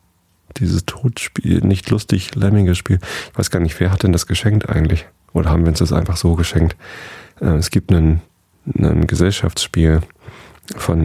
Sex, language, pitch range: male, German, 80-100 Hz